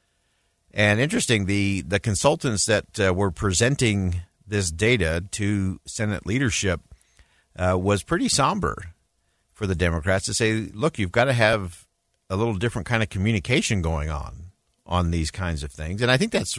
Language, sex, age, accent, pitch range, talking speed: English, male, 50-69, American, 90-120 Hz, 165 wpm